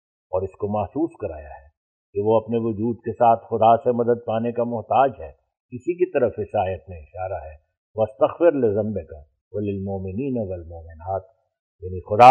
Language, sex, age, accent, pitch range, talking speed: English, male, 60-79, Indian, 110-140 Hz, 140 wpm